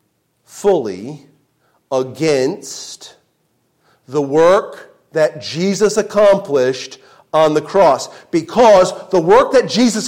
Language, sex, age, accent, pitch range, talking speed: English, male, 40-59, American, 190-265 Hz, 90 wpm